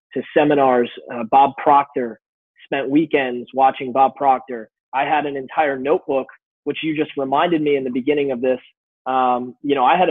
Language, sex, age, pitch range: English, male, 20-39, 130-150 Hz